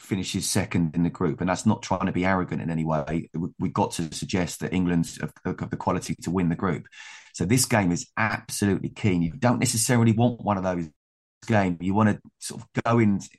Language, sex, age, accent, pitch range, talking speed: English, male, 20-39, British, 95-115 Hz, 220 wpm